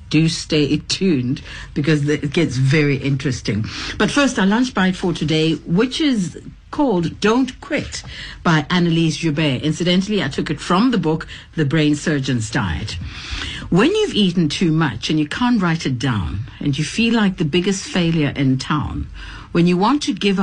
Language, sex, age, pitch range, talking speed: English, female, 60-79, 145-200 Hz, 175 wpm